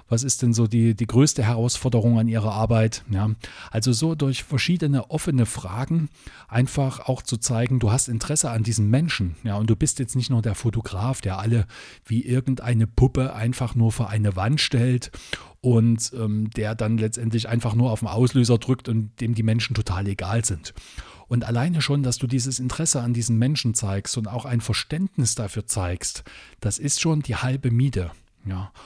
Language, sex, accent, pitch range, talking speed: German, male, German, 110-130 Hz, 185 wpm